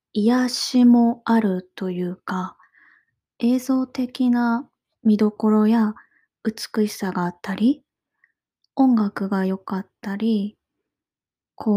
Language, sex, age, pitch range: Japanese, female, 20-39, 190-240 Hz